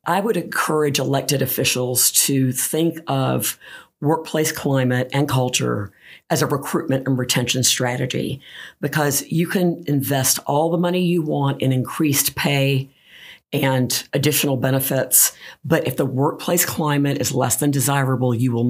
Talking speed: 140 wpm